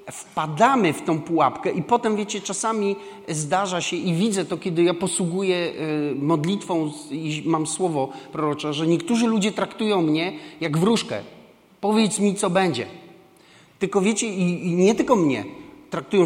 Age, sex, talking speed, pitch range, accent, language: 40-59, male, 145 wpm, 150-200 Hz, native, Polish